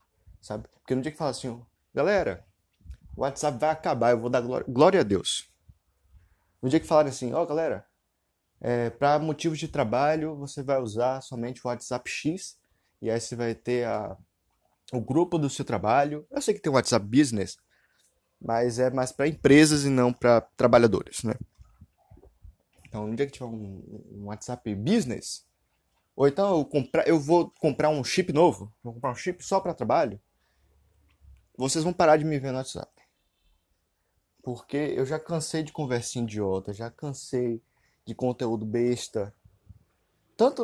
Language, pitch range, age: Portuguese, 105-150 Hz, 20-39